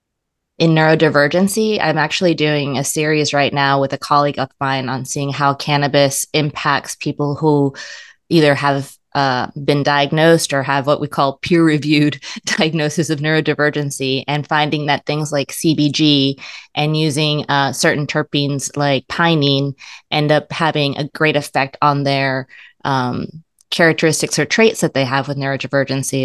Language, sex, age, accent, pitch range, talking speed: English, female, 20-39, American, 140-165 Hz, 150 wpm